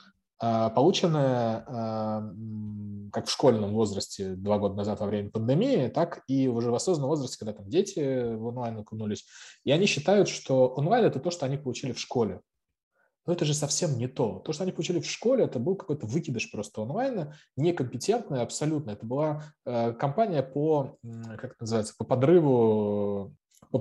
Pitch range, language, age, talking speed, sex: 110-145 Hz, Russian, 20-39, 165 wpm, male